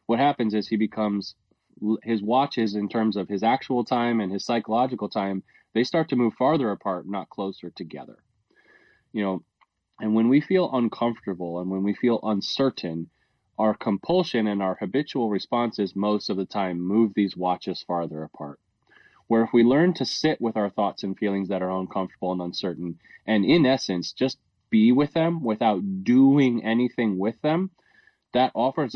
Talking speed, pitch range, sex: 170 wpm, 95-120 Hz, male